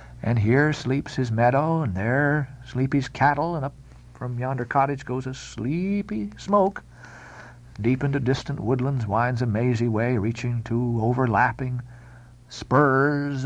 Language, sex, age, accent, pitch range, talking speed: English, male, 50-69, American, 110-160 Hz, 140 wpm